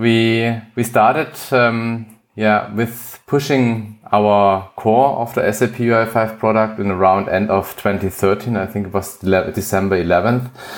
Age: 30-49